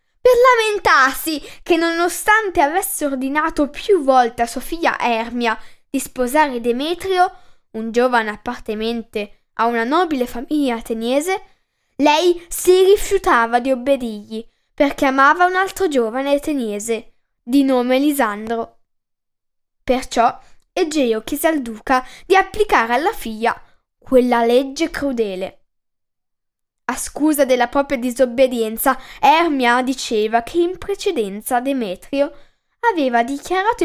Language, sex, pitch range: Italian, female, 240-325 Hz